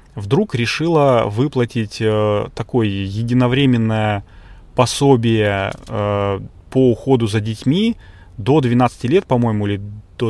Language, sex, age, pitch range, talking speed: Russian, male, 20-39, 100-125 Hz, 105 wpm